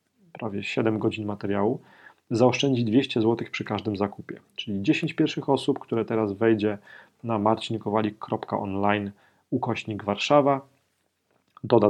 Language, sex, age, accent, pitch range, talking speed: Polish, male, 40-59, native, 105-120 Hz, 110 wpm